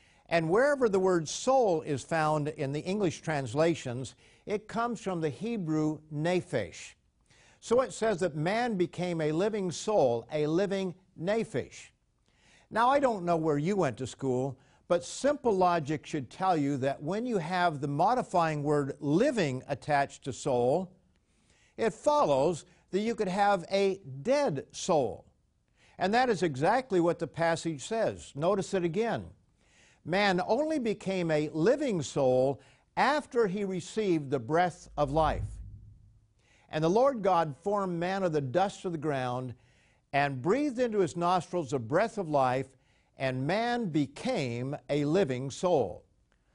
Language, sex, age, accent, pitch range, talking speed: English, male, 50-69, American, 145-195 Hz, 150 wpm